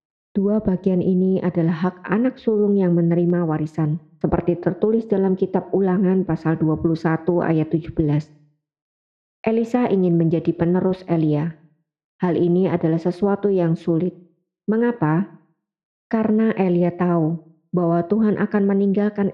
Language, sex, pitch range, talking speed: Indonesian, male, 170-200 Hz, 120 wpm